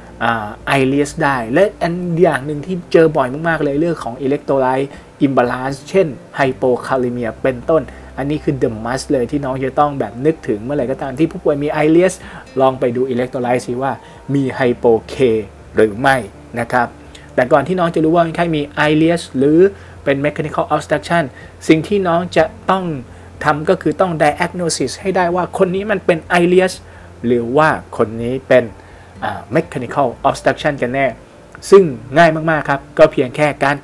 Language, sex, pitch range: Thai, male, 120-160 Hz